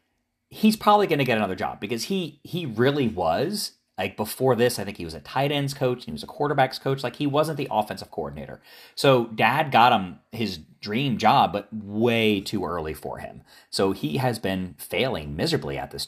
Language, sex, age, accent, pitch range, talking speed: English, male, 30-49, American, 85-130 Hz, 205 wpm